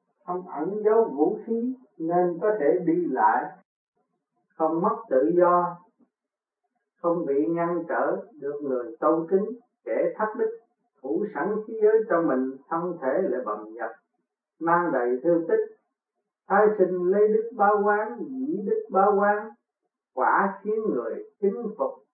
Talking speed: 150 wpm